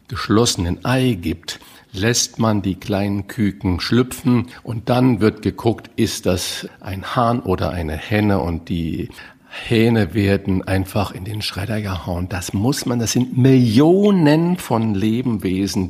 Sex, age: male, 50-69